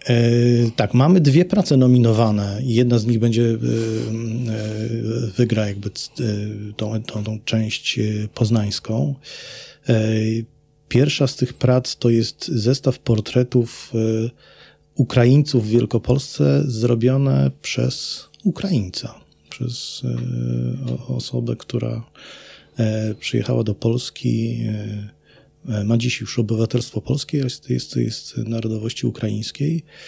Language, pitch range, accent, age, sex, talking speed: Polish, 110-125 Hz, native, 40-59, male, 95 wpm